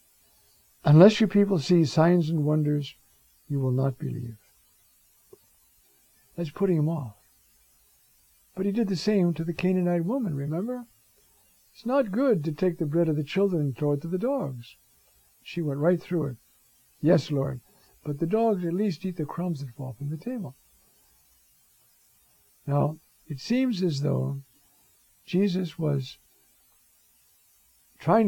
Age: 60-79